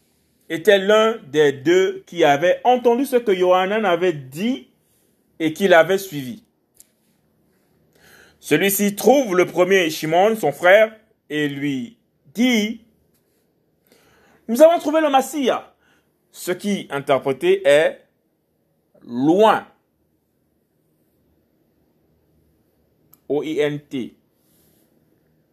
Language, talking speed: French, 85 wpm